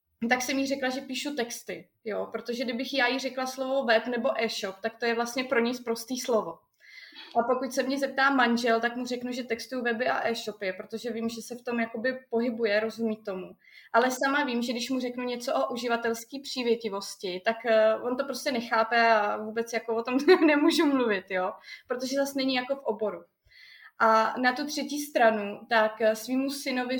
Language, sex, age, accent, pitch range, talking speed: Czech, female, 20-39, native, 220-255 Hz, 195 wpm